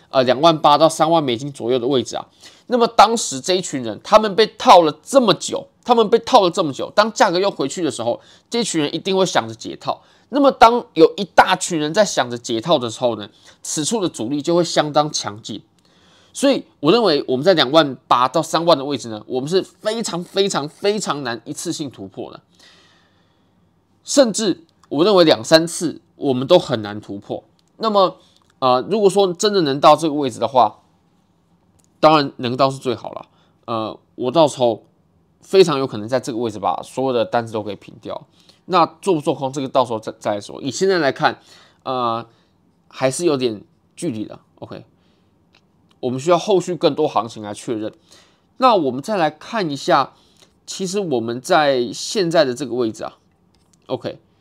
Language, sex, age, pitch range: Chinese, male, 20-39, 125-190 Hz